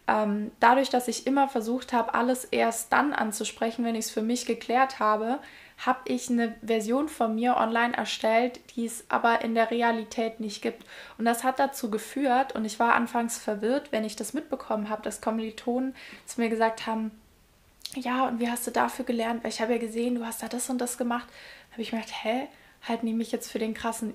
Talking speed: 215 wpm